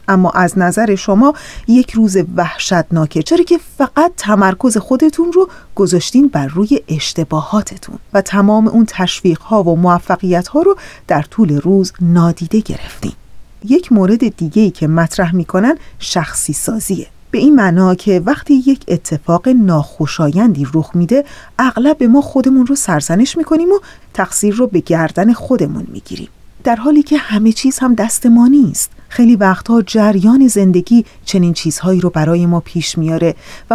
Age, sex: 30-49, female